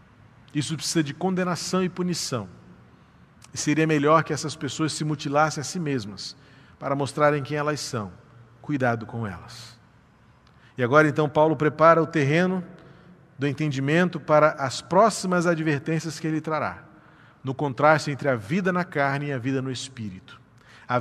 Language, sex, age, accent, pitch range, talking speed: Portuguese, male, 40-59, Brazilian, 115-150 Hz, 155 wpm